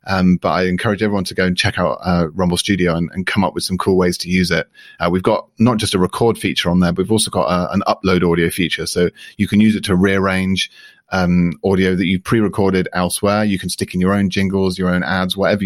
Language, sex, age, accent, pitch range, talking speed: English, male, 30-49, British, 90-105 Hz, 255 wpm